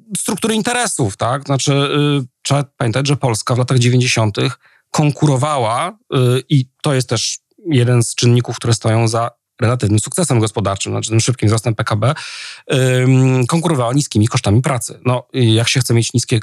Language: Polish